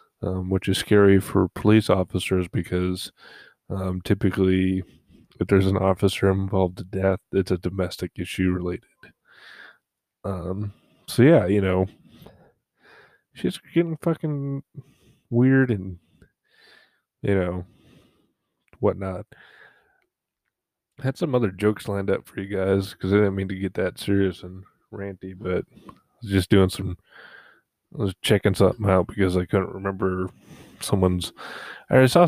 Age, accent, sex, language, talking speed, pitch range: 20-39, American, male, English, 135 wpm, 95-105 Hz